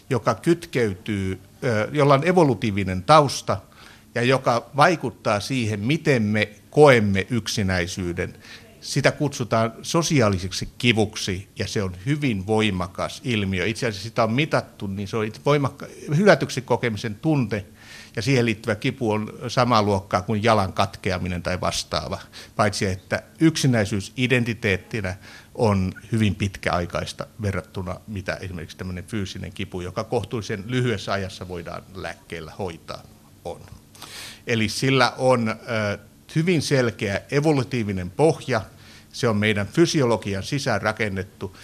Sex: male